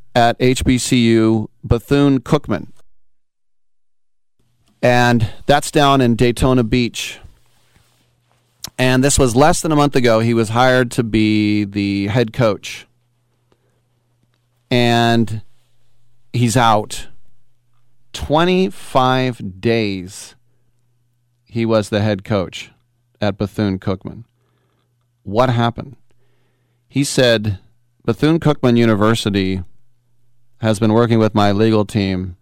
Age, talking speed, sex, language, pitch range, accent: 40-59, 95 wpm, male, English, 105-120 Hz, American